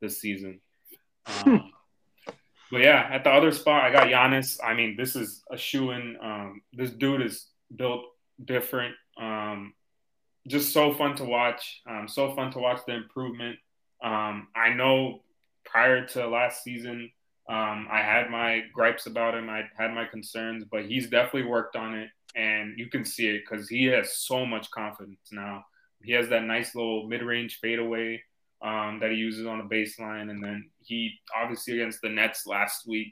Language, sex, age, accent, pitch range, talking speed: English, male, 20-39, American, 110-125 Hz, 175 wpm